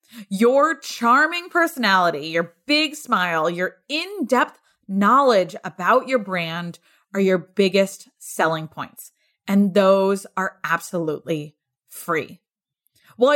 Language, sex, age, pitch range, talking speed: English, female, 20-39, 185-255 Hz, 105 wpm